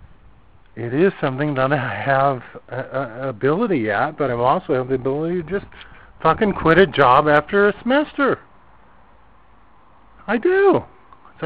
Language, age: English, 50-69